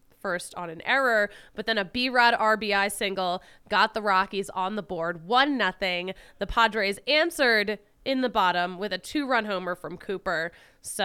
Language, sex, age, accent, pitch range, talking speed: English, female, 20-39, American, 185-245 Hz, 175 wpm